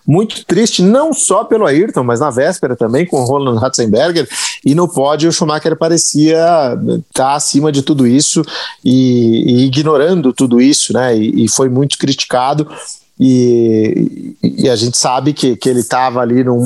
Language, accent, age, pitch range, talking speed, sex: Portuguese, Brazilian, 40-59, 125-155 Hz, 175 wpm, male